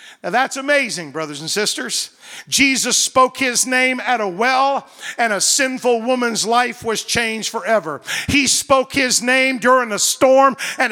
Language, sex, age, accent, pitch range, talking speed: English, male, 50-69, American, 200-255 Hz, 160 wpm